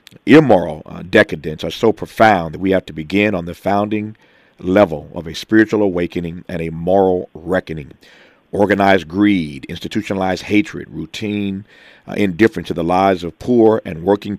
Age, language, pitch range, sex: 40-59, English, 85-100 Hz, male